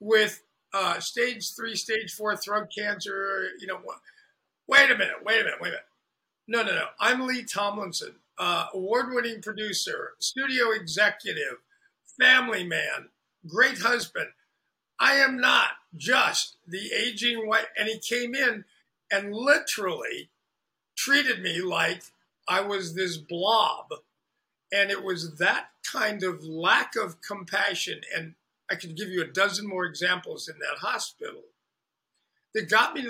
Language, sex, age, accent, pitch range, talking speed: English, male, 50-69, American, 185-245 Hz, 145 wpm